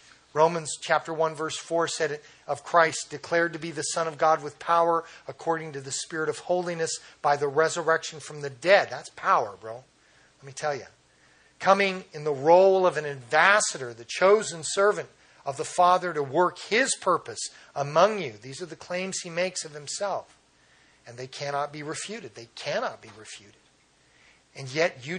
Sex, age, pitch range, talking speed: male, 40-59, 135-170 Hz, 180 wpm